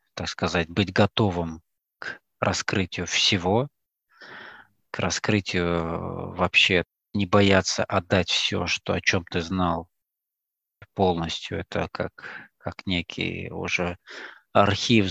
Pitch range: 85-100 Hz